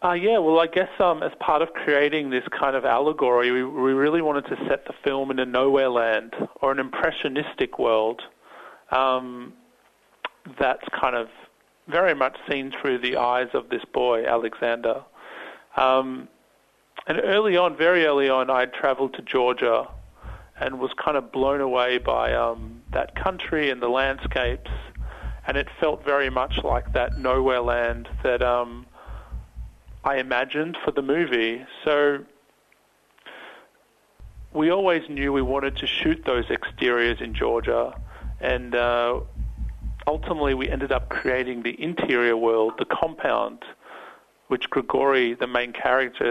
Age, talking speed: 30-49, 150 wpm